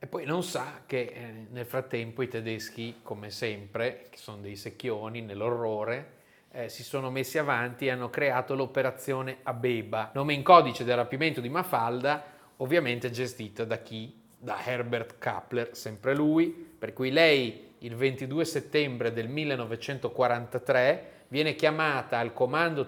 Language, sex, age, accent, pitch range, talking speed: Italian, male, 30-49, native, 115-145 Hz, 145 wpm